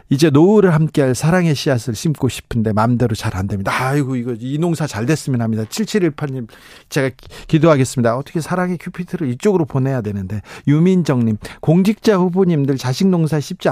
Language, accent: Korean, native